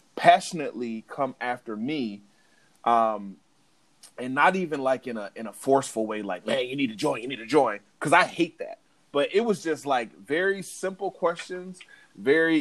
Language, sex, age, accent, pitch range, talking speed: English, male, 30-49, American, 130-190 Hz, 180 wpm